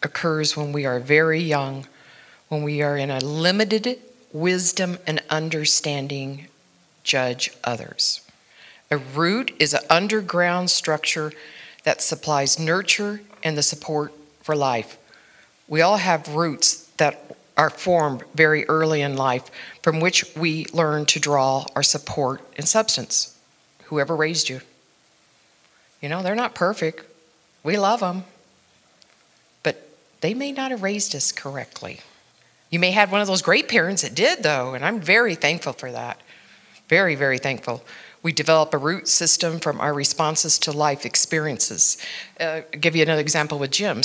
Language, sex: English, female